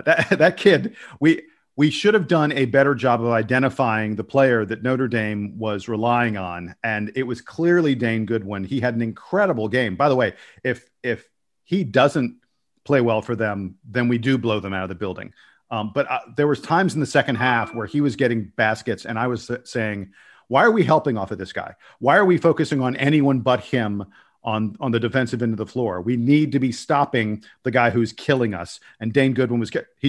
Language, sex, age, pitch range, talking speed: English, male, 40-59, 110-140 Hz, 220 wpm